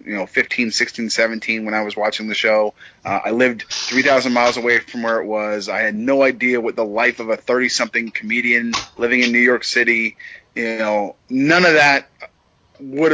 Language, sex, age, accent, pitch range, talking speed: English, male, 30-49, American, 110-135 Hz, 195 wpm